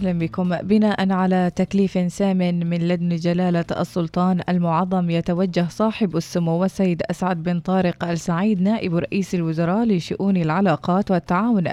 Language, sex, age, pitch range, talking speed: English, female, 20-39, 170-195 Hz, 130 wpm